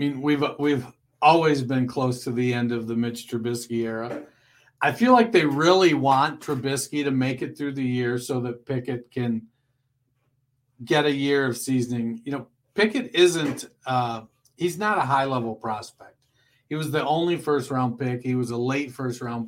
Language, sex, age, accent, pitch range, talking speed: English, male, 40-59, American, 125-155 Hz, 180 wpm